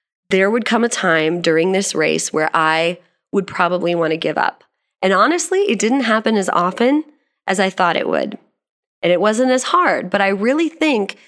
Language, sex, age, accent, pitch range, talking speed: English, female, 20-39, American, 175-235 Hz, 195 wpm